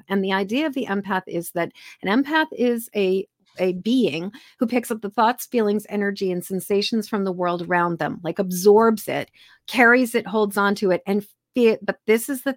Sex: female